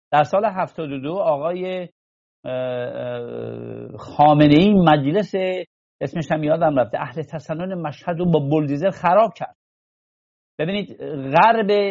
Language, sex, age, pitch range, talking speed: English, male, 50-69, 145-185 Hz, 100 wpm